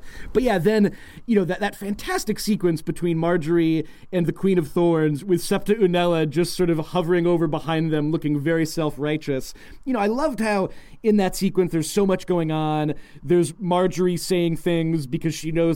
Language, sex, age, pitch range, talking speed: English, male, 30-49, 155-185 Hz, 185 wpm